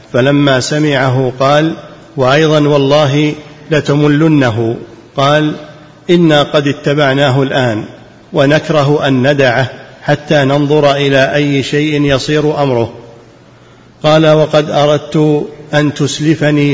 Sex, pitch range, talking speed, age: male, 135-150 Hz, 95 wpm, 50-69